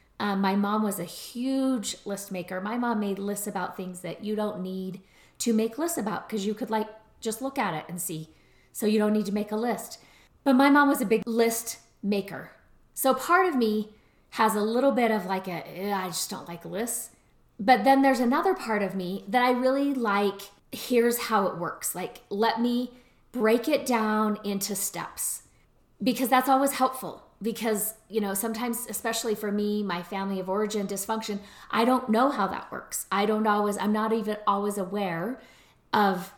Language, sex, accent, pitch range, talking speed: English, female, American, 195-235 Hz, 195 wpm